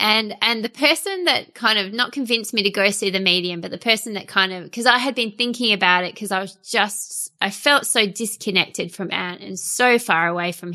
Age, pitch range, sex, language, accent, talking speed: 20-39, 175-215 Hz, female, English, Australian, 240 wpm